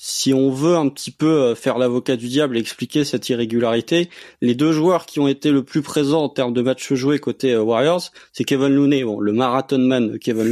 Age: 20-39